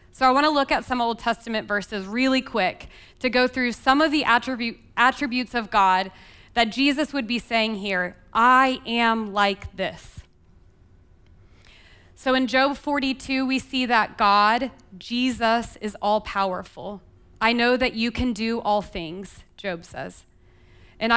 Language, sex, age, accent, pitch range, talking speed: English, female, 20-39, American, 195-250 Hz, 150 wpm